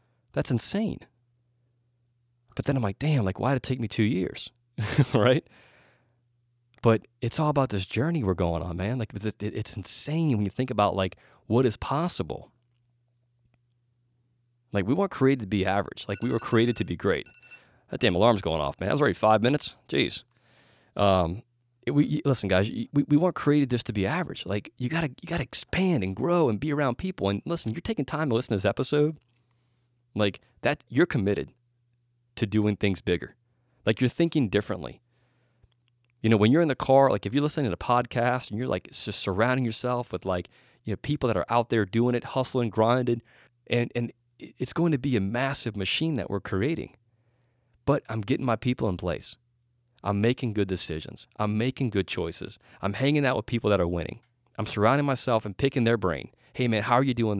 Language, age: English, 30-49